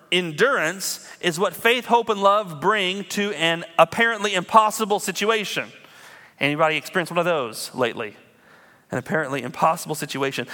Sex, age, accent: male, 30-49, American